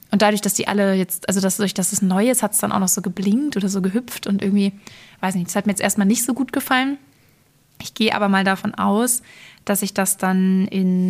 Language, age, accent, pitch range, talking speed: German, 20-39, German, 190-210 Hz, 255 wpm